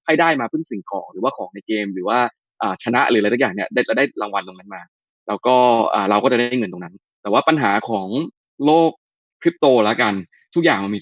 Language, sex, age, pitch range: Thai, male, 20-39, 105-135 Hz